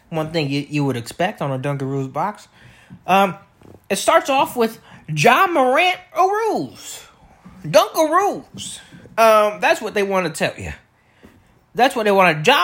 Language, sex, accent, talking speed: English, male, American, 160 wpm